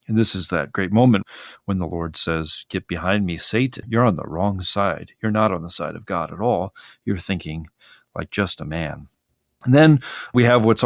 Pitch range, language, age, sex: 85-110 Hz, English, 40-59, male